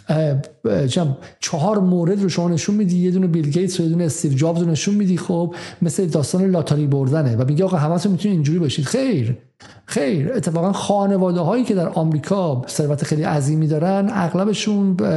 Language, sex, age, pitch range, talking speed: Persian, male, 50-69, 155-195 Hz, 170 wpm